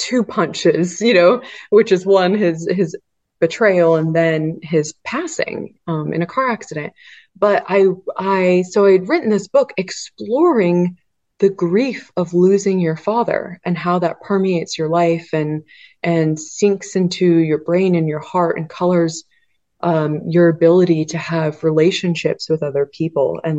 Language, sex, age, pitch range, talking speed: English, female, 20-39, 155-190 Hz, 160 wpm